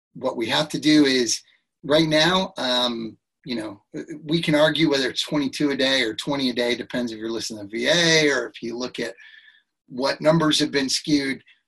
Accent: American